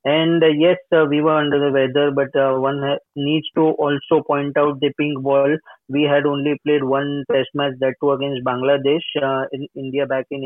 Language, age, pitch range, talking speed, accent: English, 20-39, 140-155 Hz, 200 wpm, Indian